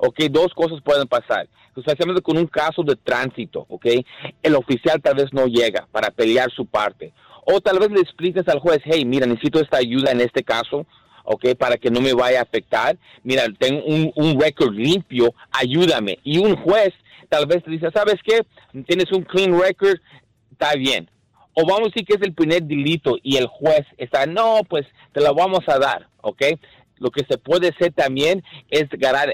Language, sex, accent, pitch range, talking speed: Spanish, male, Mexican, 130-170 Hz, 195 wpm